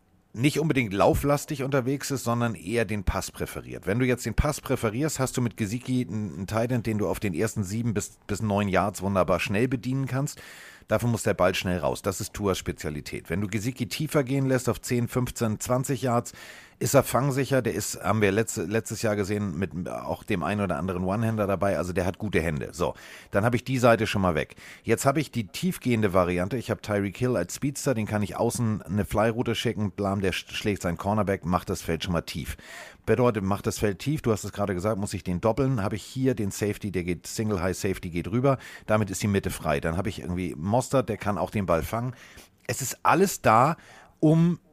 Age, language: 40-59, German